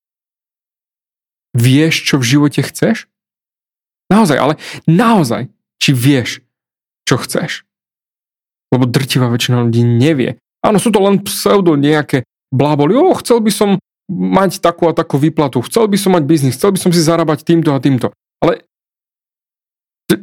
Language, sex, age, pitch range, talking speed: Slovak, male, 30-49, 130-170 Hz, 140 wpm